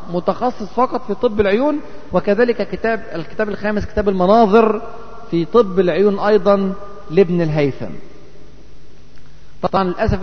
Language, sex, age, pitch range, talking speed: Arabic, male, 40-59, 175-230 Hz, 110 wpm